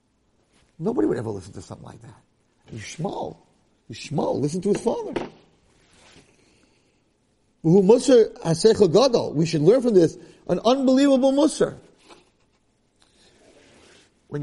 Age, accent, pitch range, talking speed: 50-69, American, 110-160 Hz, 100 wpm